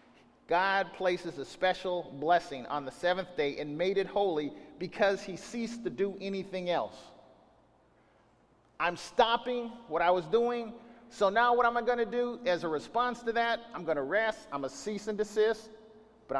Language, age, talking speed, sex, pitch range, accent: English, 40-59, 170 wpm, male, 185-240 Hz, American